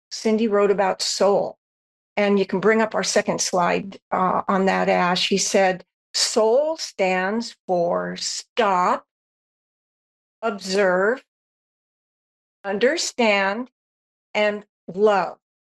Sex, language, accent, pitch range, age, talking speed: female, English, American, 195-245 Hz, 60-79, 100 wpm